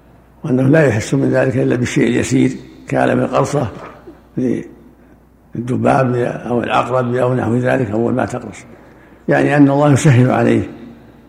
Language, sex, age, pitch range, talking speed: Arabic, male, 60-79, 115-140 Hz, 130 wpm